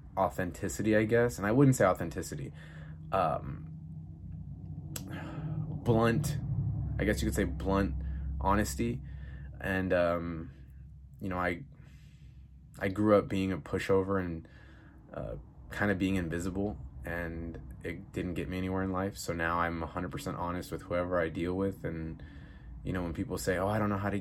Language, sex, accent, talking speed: English, male, American, 160 wpm